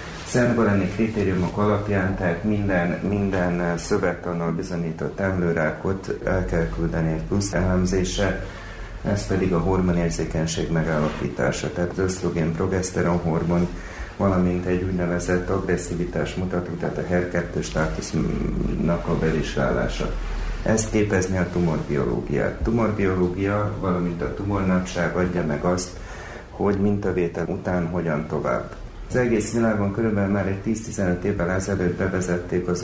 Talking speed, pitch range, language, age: 115 wpm, 85-100 Hz, Hungarian, 30-49